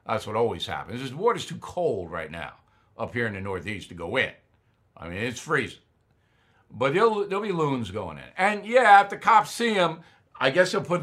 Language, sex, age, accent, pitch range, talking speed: English, male, 60-79, American, 115-155 Hz, 210 wpm